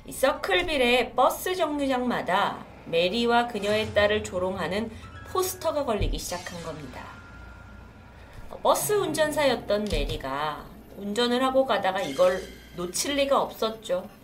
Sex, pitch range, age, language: female, 195-285 Hz, 30-49, Korean